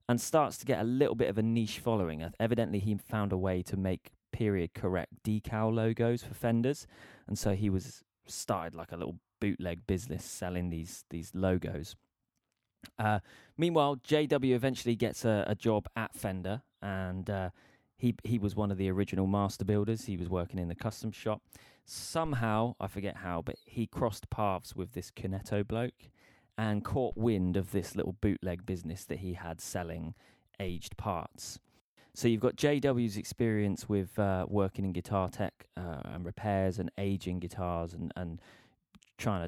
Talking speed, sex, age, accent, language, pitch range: 170 wpm, male, 20-39, British, English, 90-110 Hz